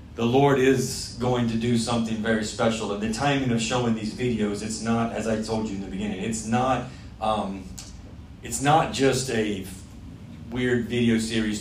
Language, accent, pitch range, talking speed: English, American, 105-120 Hz, 180 wpm